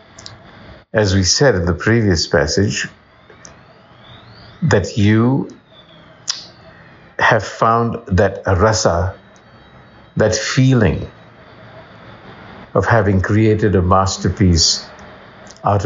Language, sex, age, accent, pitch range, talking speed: English, male, 60-79, Indian, 90-115 Hz, 80 wpm